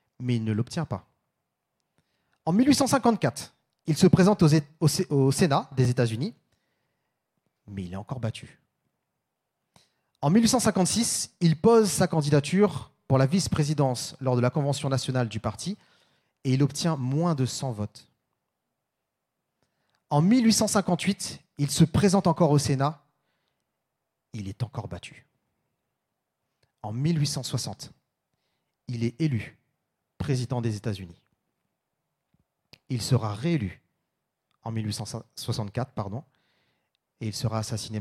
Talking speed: 115 wpm